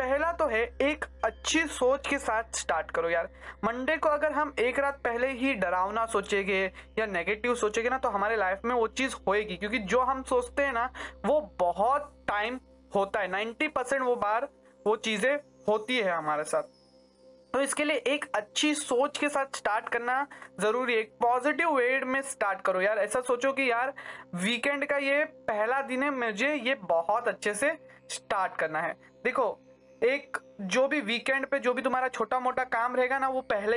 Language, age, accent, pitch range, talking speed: Hindi, 20-39, native, 205-270 Hz, 185 wpm